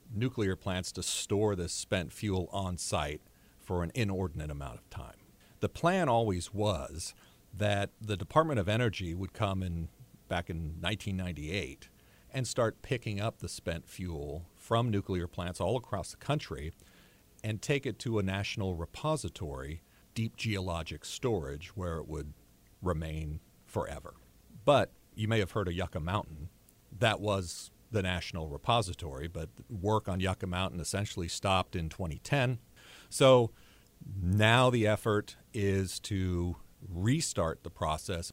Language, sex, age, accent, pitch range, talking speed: English, male, 40-59, American, 85-105 Hz, 140 wpm